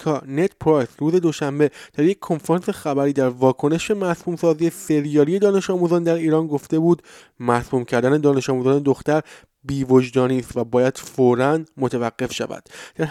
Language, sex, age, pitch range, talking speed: Persian, male, 20-39, 130-165 Hz, 145 wpm